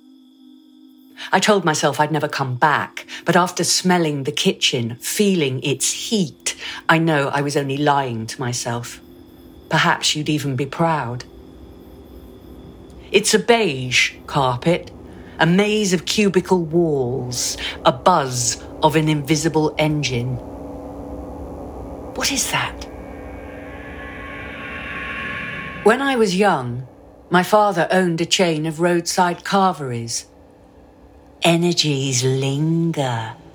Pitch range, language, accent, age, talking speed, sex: 125-180 Hz, English, British, 50-69, 105 wpm, female